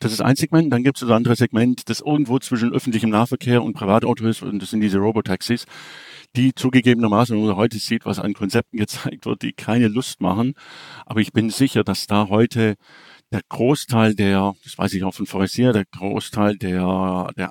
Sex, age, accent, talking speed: male, 50-69, German, 200 wpm